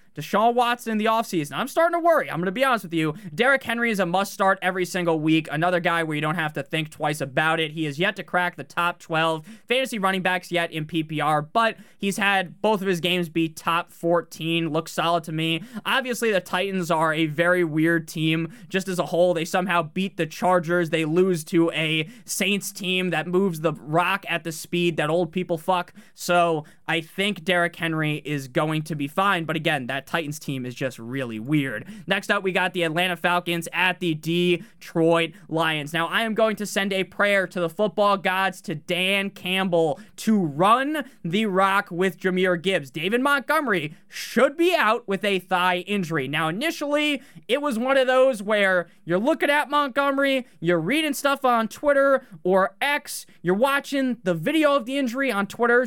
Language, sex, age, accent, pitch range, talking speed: English, male, 20-39, American, 165-215 Hz, 200 wpm